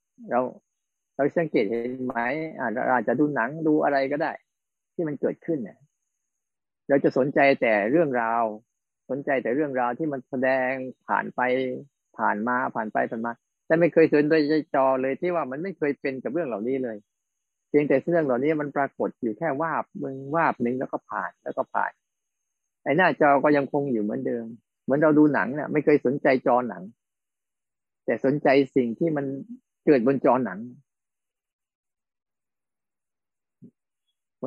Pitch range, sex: 125-145 Hz, male